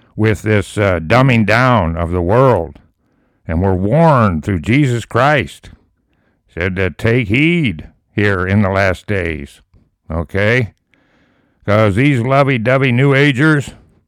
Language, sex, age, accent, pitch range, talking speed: English, male, 60-79, American, 95-130 Hz, 125 wpm